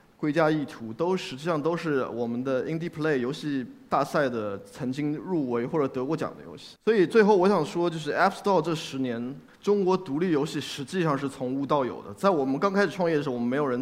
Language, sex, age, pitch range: Chinese, male, 20-39, 125-165 Hz